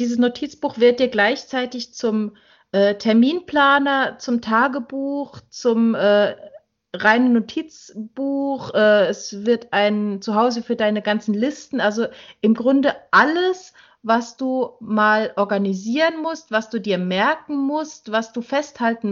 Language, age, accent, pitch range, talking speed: German, 30-49, German, 195-235 Hz, 125 wpm